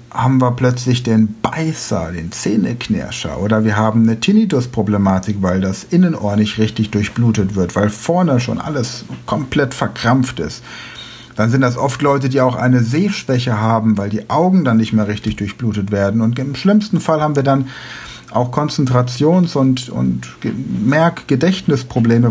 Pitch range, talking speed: 110-130 Hz, 155 wpm